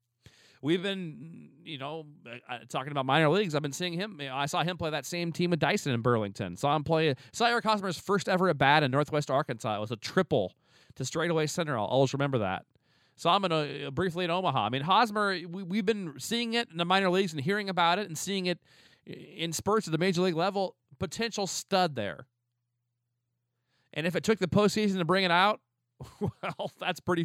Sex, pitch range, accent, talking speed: male, 125-170 Hz, American, 215 wpm